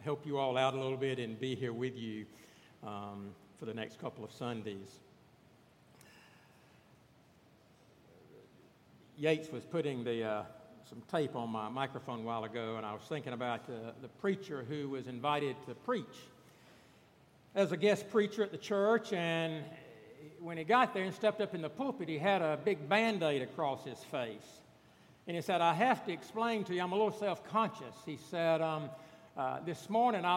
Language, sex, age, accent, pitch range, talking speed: English, male, 60-79, American, 140-200 Hz, 185 wpm